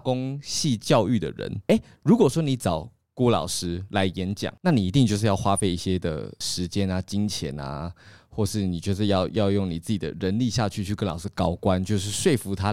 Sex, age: male, 20-39